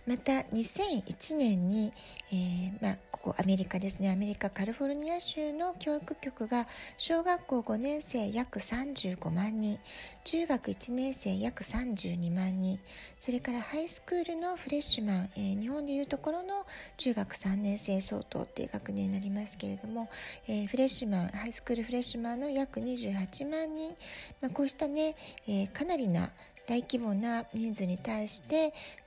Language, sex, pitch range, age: Japanese, female, 205-290 Hz, 40-59